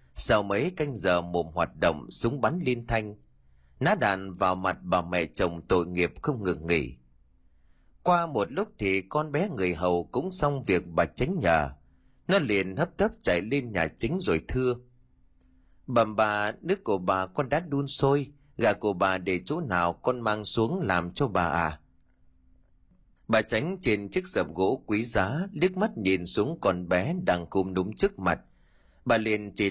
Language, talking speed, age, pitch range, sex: Vietnamese, 185 wpm, 30-49, 85-135 Hz, male